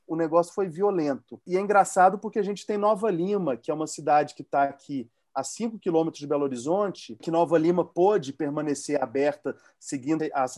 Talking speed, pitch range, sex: 195 wpm, 150-185 Hz, male